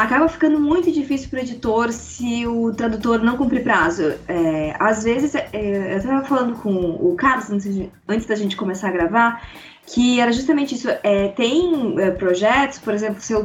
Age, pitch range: 20-39, 200-280 Hz